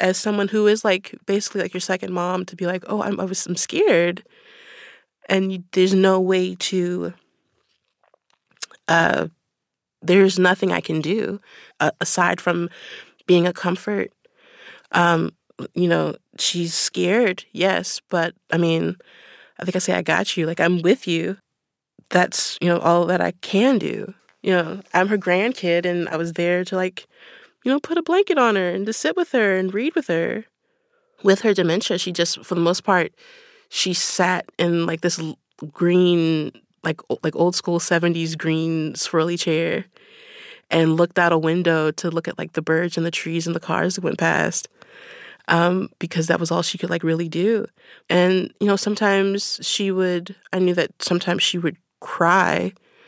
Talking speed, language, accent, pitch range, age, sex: 175 wpm, English, American, 170-200 Hz, 20-39, female